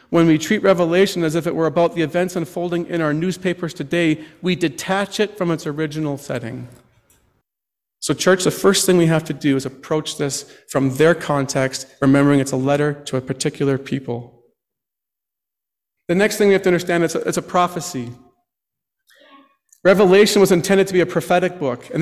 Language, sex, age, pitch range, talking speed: English, male, 40-59, 140-180 Hz, 180 wpm